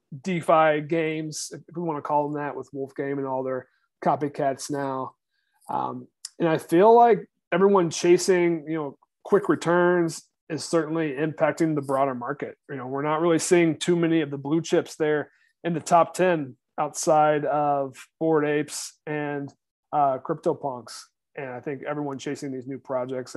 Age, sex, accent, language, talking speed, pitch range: 30-49, male, American, English, 170 wpm, 140-170 Hz